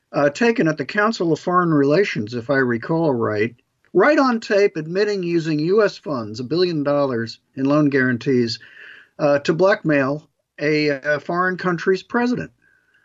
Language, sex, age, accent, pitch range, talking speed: English, male, 50-69, American, 140-200 Hz, 150 wpm